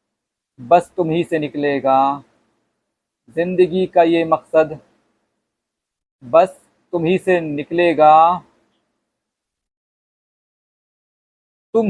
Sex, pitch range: male, 155-185 Hz